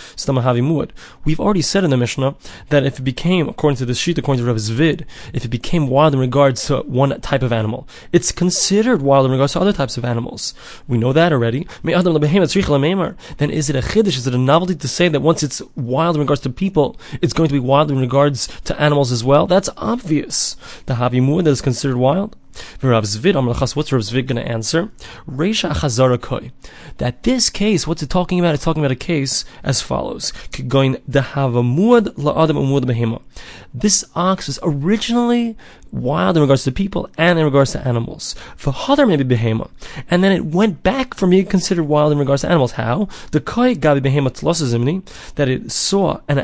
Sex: male